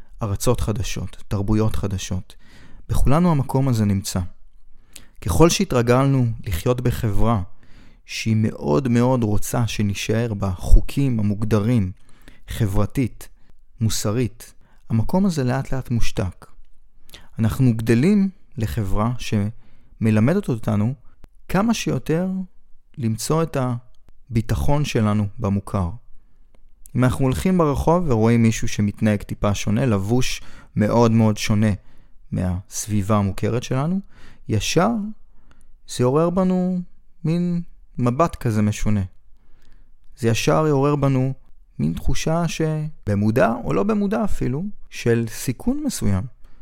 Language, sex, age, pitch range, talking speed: Hebrew, male, 30-49, 105-135 Hz, 100 wpm